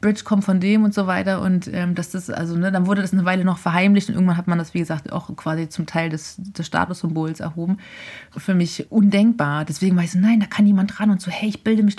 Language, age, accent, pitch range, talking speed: German, 30-49, German, 170-205 Hz, 265 wpm